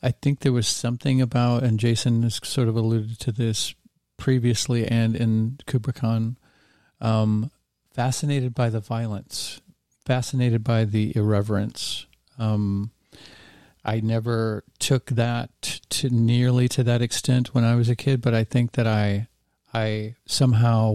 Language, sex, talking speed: English, male, 140 wpm